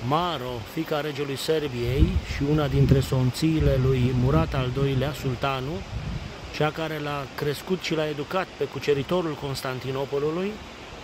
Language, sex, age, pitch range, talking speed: Romanian, male, 30-49, 130-160 Hz, 125 wpm